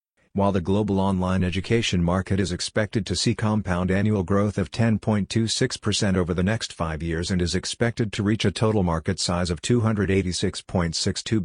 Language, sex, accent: English, male, American